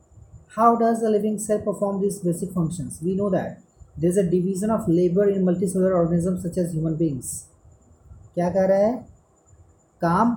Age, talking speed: 30-49, 175 wpm